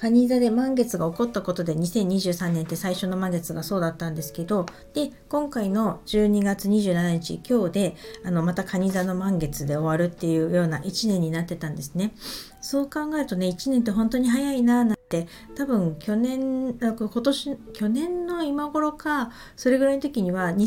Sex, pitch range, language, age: female, 180-240 Hz, Japanese, 50-69